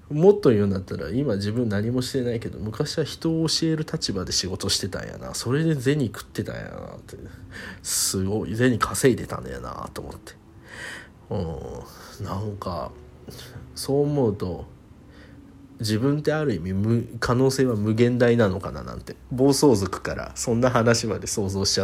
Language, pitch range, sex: Japanese, 100-125 Hz, male